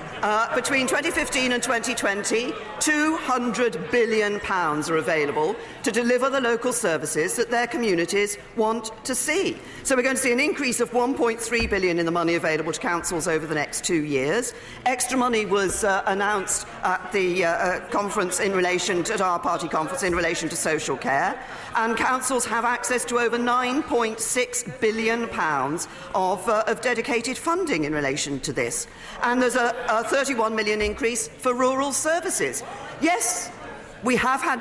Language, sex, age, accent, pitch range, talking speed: English, female, 40-59, British, 200-255 Hz, 165 wpm